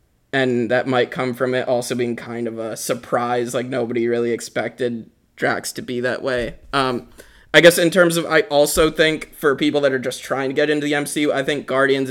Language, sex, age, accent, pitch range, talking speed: English, male, 20-39, American, 125-140 Hz, 220 wpm